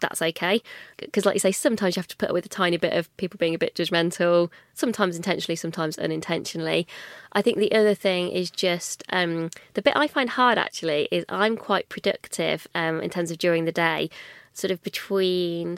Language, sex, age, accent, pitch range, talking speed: English, female, 20-39, British, 170-205 Hz, 205 wpm